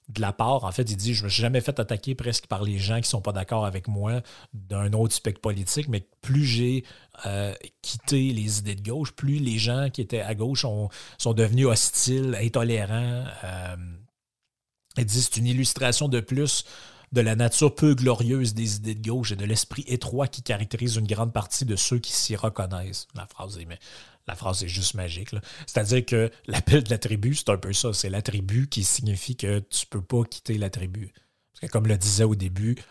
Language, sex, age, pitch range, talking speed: French, male, 30-49, 100-125 Hz, 220 wpm